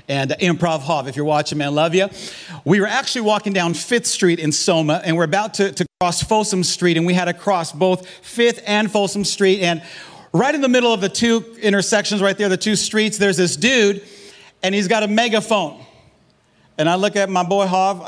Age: 50-69